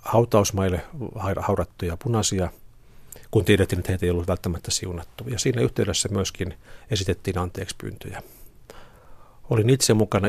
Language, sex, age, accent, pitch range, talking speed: Finnish, male, 50-69, native, 90-110 Hz, 115 wpm